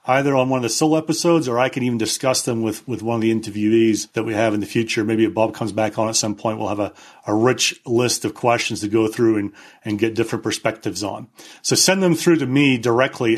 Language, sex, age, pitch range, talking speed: English, male, 40-59, 115-155 Hz, 260 wpm